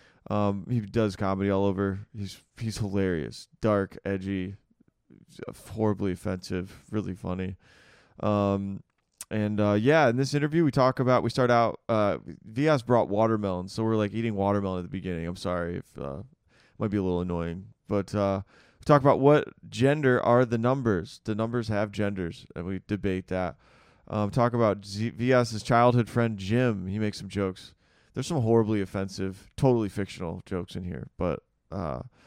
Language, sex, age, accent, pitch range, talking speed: English, male, 20-39, American, 95-115 Hz, 165 wpm